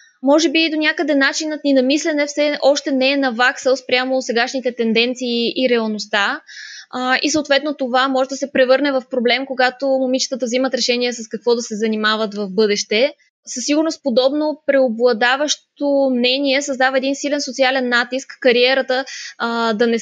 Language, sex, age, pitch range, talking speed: Bulgarian, female, 20-39, 245-280 Hz, 160 wpm